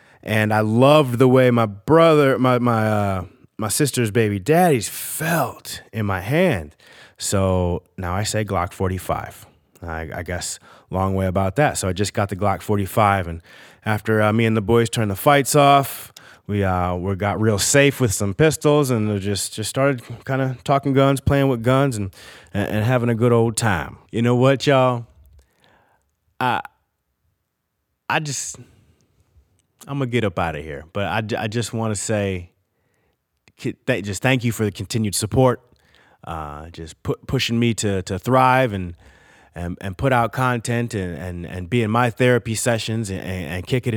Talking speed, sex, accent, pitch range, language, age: 180 wpm, male, American, 95-125 Hz, English, 30-49